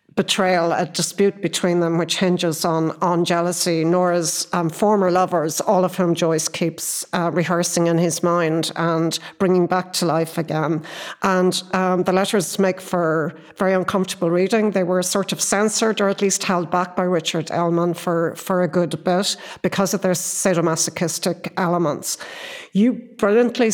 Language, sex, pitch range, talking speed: English, female, 170-195 Hz, 160 wpm